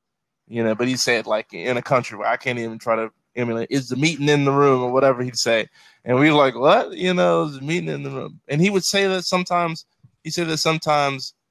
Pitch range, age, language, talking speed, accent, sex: 120-145 Hz, 20-39, English, 255 wpm, American, male